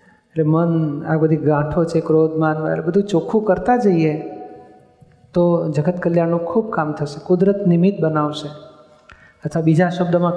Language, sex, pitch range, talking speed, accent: Gujarati, male, 165-195 Hz, 135 wpm, native